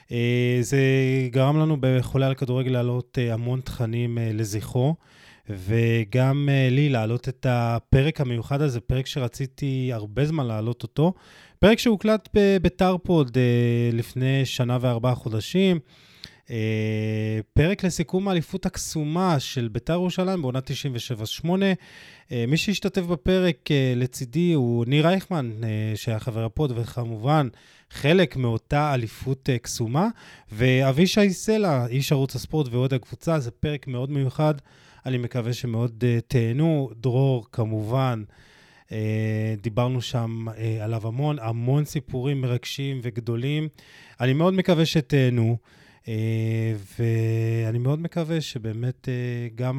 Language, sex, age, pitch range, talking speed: Hebrew, male, 20-39, 115-150 Hz, 115 wpm